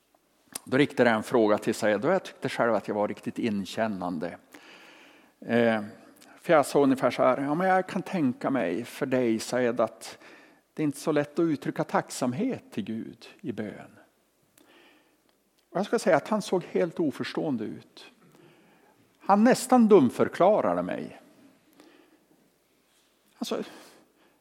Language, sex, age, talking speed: Swedish, male, 50-69, 145 wpm